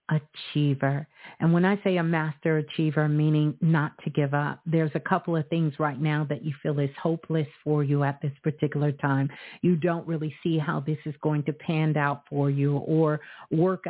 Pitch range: 155-175 Hz